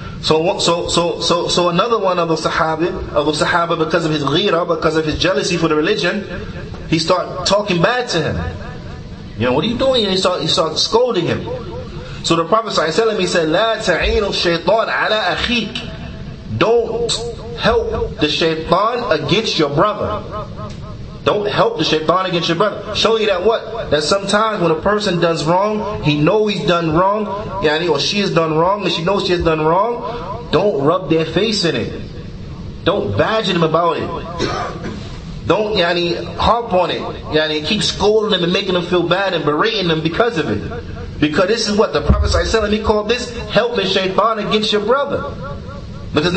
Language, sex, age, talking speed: English, male, 30-49, 190 wpm